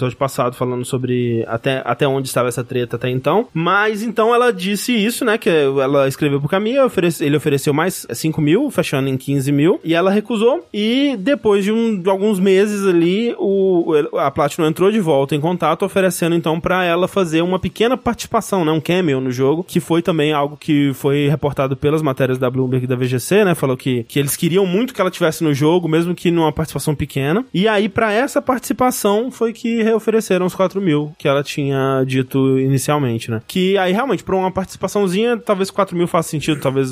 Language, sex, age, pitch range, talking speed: Portuguese, male, 20-39, 140-195 Hz, 205 wpm